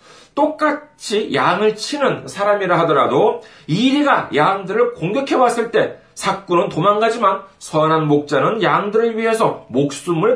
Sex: male